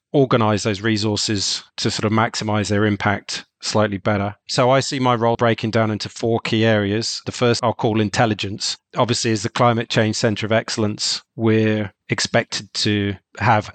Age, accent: 30-49, British